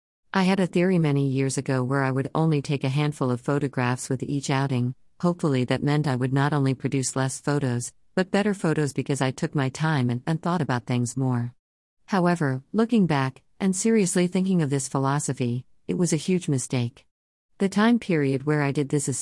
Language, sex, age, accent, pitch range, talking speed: English, female, 50-69, American, 130-170 Hz, 205 wpm